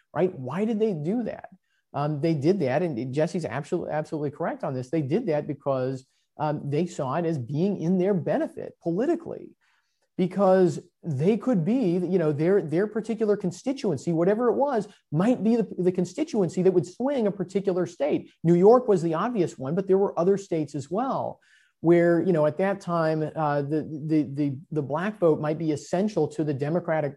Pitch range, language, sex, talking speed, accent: 150-195 Hz, English, male, 190 wpm, American